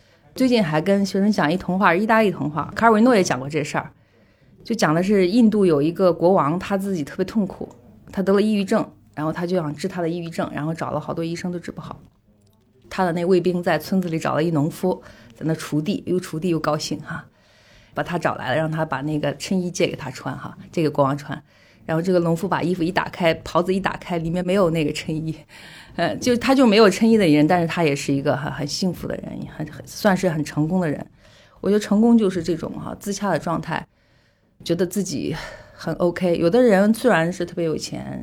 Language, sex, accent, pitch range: Chinese, female, native, 150-190 Hz